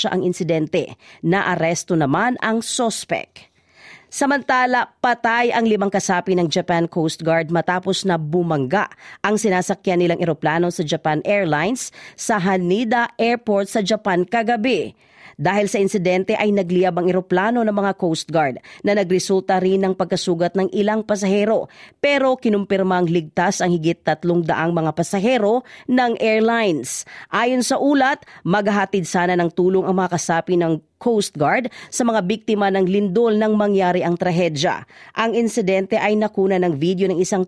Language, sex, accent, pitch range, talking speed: Filipino, female, native, 180-230 Hz, 145 wpm